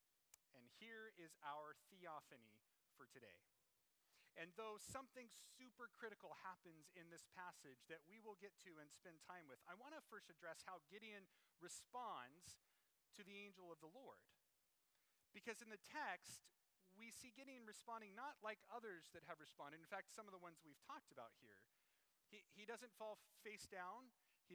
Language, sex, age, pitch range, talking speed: English, male, 30-49, 165-215 Hz, 170 wpm